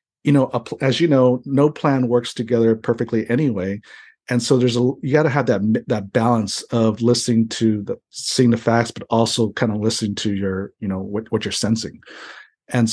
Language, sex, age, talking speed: English, male, 50-69, 200 wpm